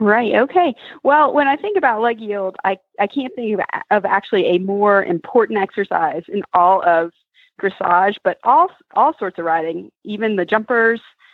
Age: 30-49